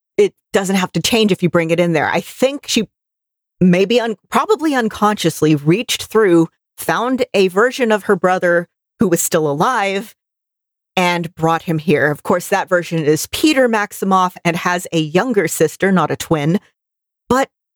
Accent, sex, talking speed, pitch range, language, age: American, female, 165 wpm, 165-210 Hz, English, 40-59